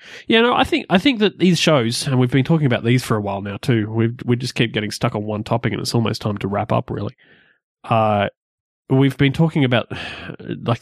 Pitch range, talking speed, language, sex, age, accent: 105-125 Hz, 240 wpm, English, male, 20-39, Australian